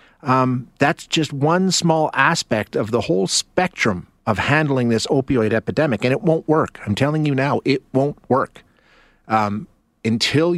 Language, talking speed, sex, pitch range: English, 160 wpm, male, 110-155 Hz